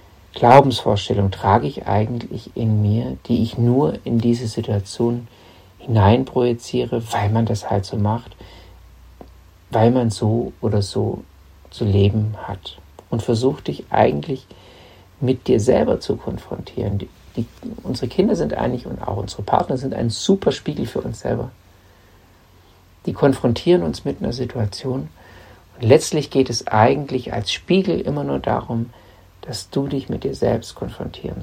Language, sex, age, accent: German, male, 50-69, German